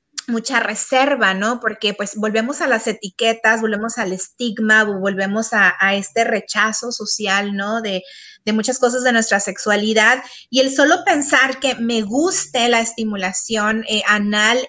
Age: 30-49